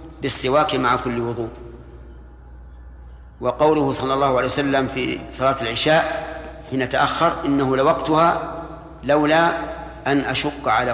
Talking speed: 110 wpm